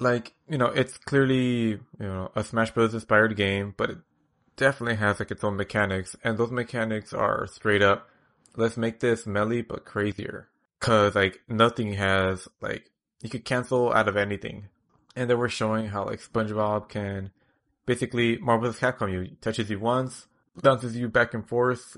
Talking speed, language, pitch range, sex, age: 170 wpm, English, 100-120 Hz, male, 20-39